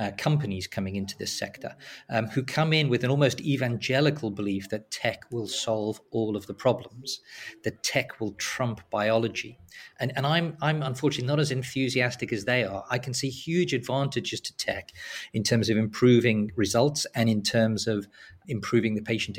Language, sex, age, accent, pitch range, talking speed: English, male, 40-59, British, 110-135 Hz, 180 wpm